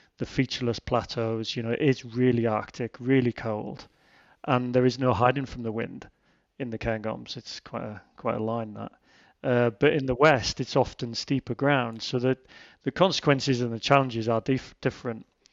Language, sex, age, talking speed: English, male, 30-49, 180 wpm